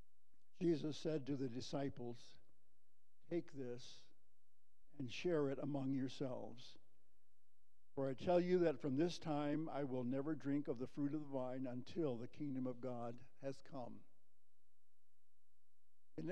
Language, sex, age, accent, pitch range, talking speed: English, male, 60-79, American, 120-145 Hz, 140 wpm